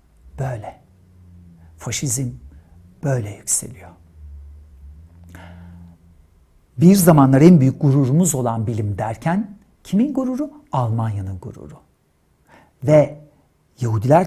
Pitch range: 115-170 Hz